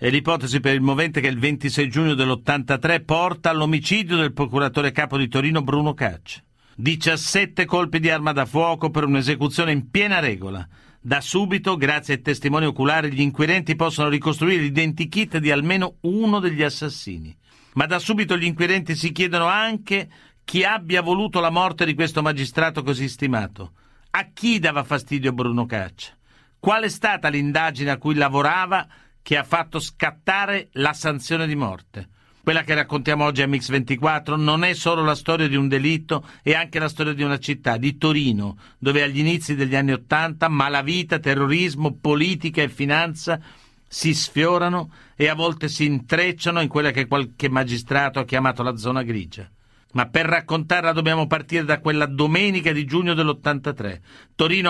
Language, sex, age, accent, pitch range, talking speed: Italian, male, 50-69, native, 135-165 Hz, 160 wpm